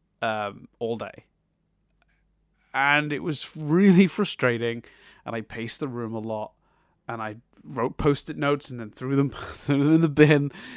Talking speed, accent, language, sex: 150 wpm, British, English, male